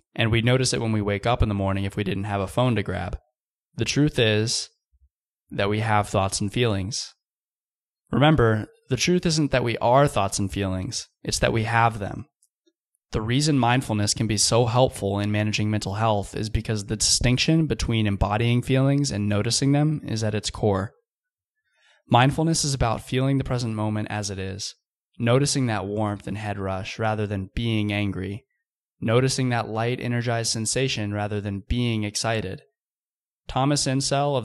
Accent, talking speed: American, 170 wpm